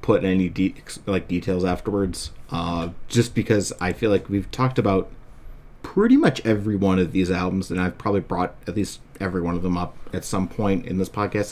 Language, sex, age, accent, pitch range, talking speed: English, male, 30-49, American, 95-120 Hz, 200 wpm